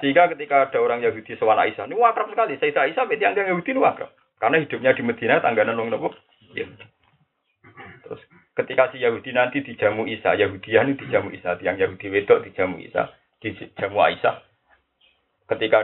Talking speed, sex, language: 160 wpm, male, Indonesian